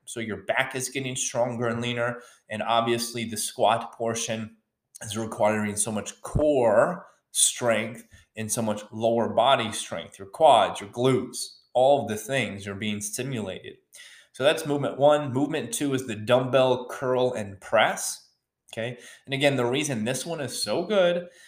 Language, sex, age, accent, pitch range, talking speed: English, male, 20-39, American, 105-125 Hz, 160 wpm